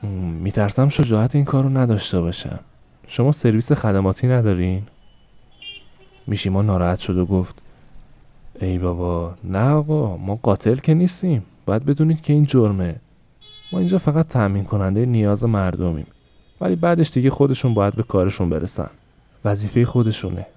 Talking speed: 135 wpm